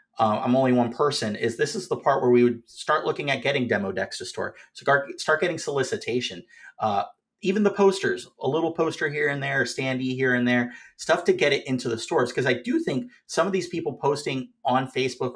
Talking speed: 230 wpm